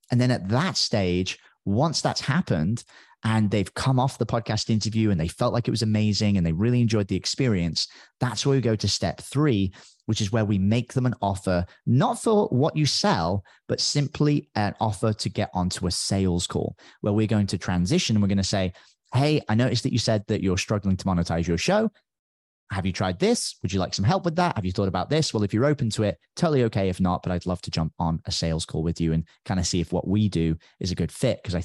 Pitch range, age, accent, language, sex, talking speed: 90-120 Hz, 30-49, British, English, male, 250 wpm